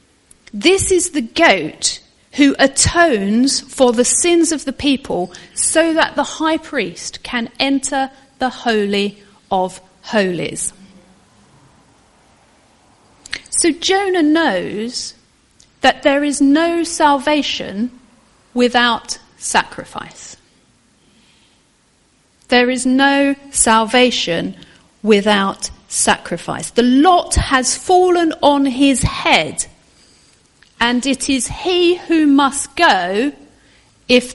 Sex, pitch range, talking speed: female, 220-285 Hz, 95 wpm